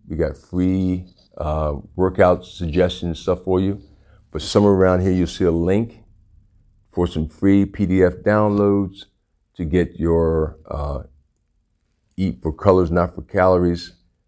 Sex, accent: male, American